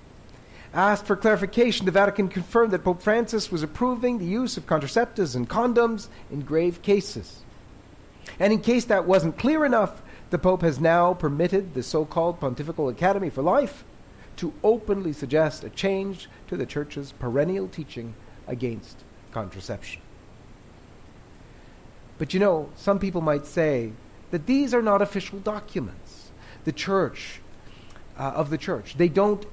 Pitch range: 135-200 Hz